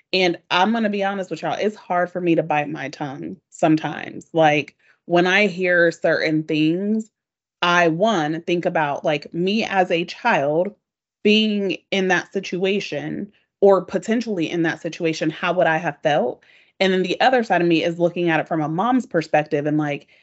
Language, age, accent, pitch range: English, 30-49, American, 155-190 Hz